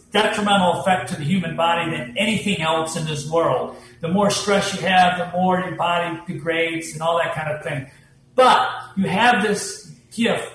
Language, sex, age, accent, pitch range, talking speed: English, male, 50-69, American, 165-205 Hz, 190 wpm